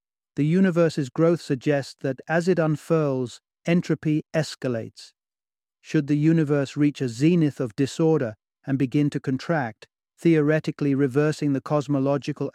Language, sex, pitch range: English, male, 130-155 Hz